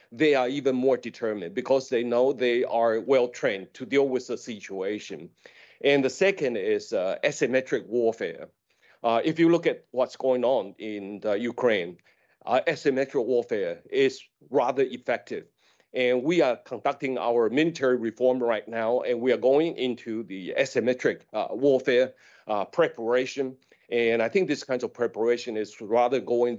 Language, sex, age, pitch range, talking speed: English, male, 40-59, 120-145 Hz, 155 wpm